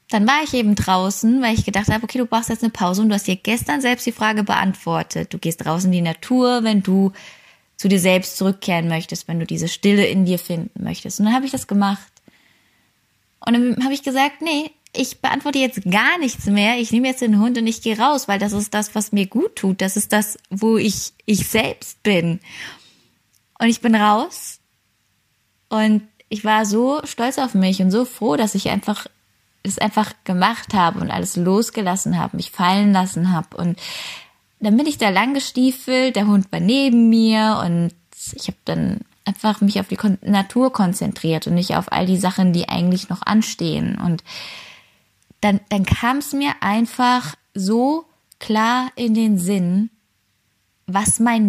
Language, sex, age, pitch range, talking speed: German, female, 20-39, 190-235 Hz, 190 wpm